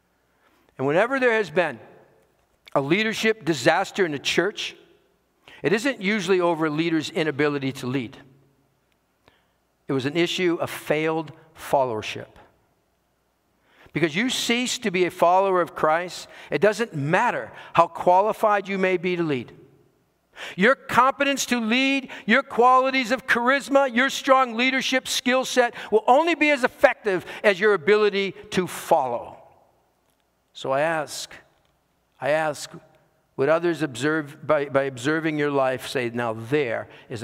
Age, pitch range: 50-69, 150-225 Hz